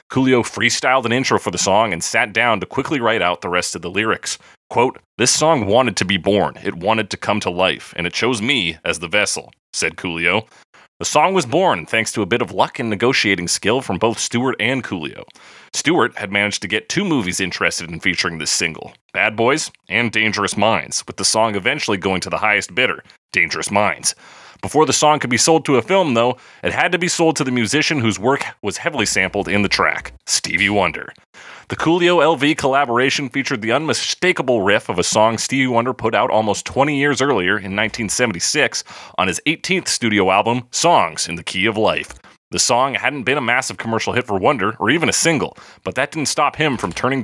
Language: English